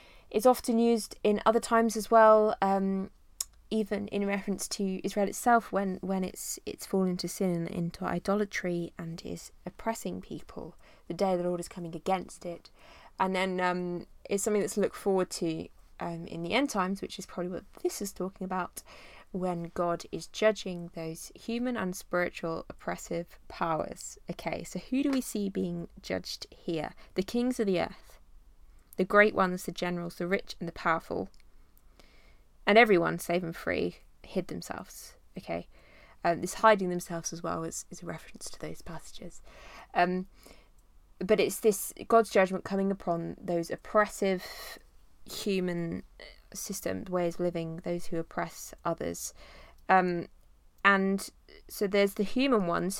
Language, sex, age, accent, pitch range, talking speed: English, female, 20-39, British, 170-205 Hz, 160 wpm